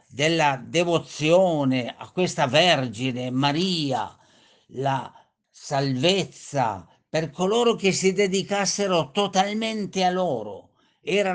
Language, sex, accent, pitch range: Italian, male, native, 145-200 Hz